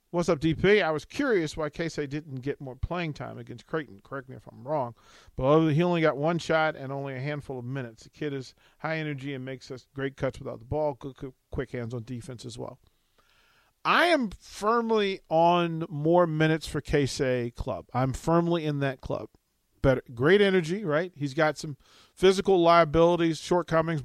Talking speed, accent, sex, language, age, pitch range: 185 wpm, American, male, English, 40-59, 125-155 Hz